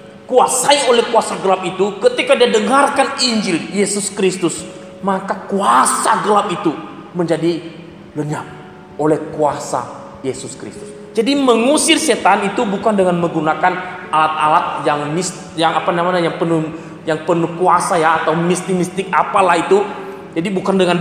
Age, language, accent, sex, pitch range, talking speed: 20-39, Indonesian, native, male, 155-210 Hz, 135 wpm